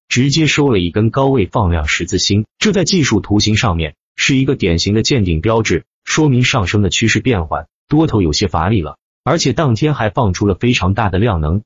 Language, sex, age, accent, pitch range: Chinese, male, 30-49, native, 90-130 Hz